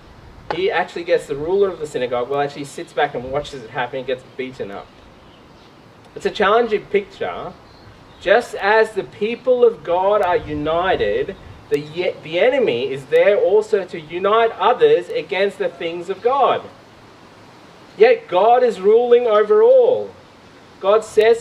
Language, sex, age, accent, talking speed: English, male, 30-49, Australian, 150 wpm